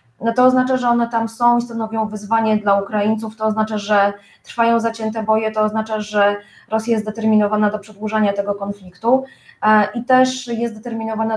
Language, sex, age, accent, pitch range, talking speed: Polish, female, 20-39, native, 205-225 Hz, 170 wpm